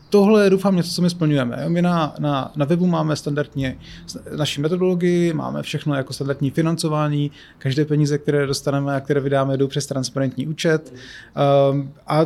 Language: Czech